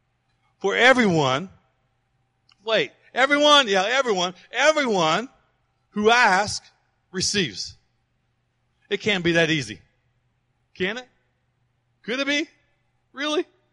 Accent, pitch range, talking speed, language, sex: American, 125-195 Hz, 90 wpm, English, male